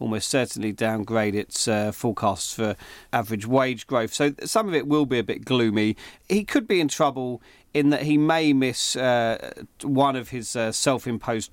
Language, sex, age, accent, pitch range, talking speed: English, male, 40-59, British, 110-130 Hz, 180 wpm